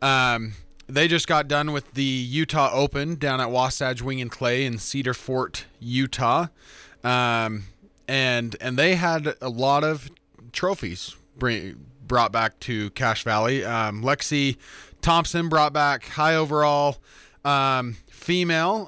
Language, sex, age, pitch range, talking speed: English, male, 20-39, 120-155 Hz, 135 wpm